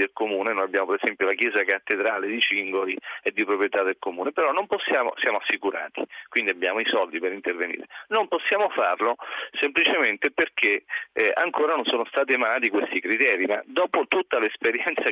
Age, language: 40-59, Italian